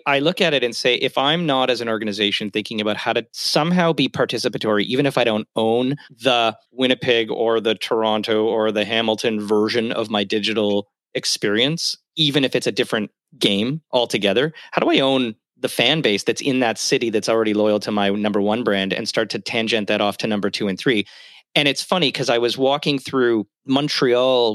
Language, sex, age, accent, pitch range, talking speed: English, male, 30-49, American, 110-140 Hz, 205 wpm